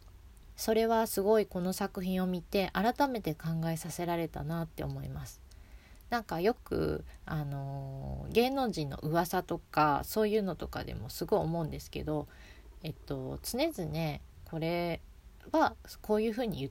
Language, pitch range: Japanese, 150-210 Hz